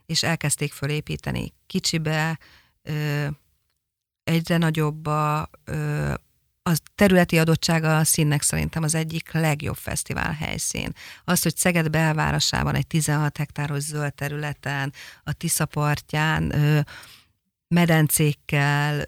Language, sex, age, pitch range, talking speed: Hungarian, female, 50-69, 145-165 Hz, 100 wpm